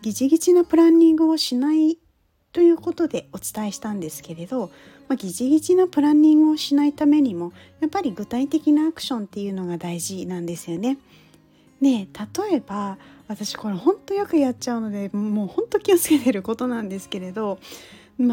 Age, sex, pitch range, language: 40-59, female, 180-300 Hz, Japanese